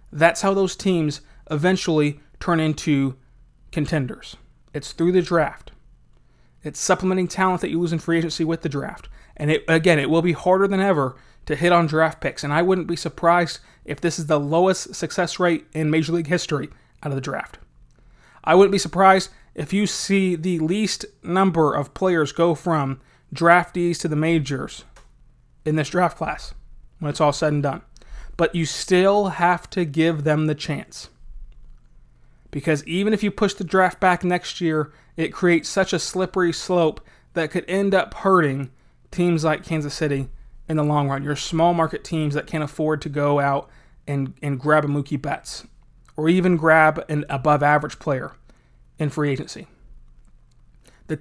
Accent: American